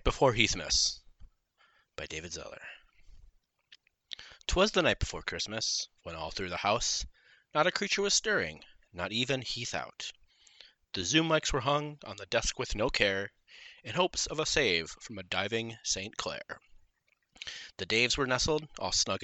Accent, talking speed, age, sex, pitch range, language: American, 160 wpm, 30-49, male, 105-160 Hz, English